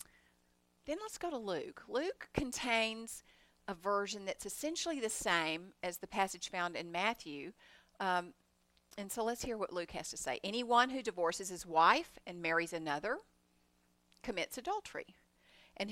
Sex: female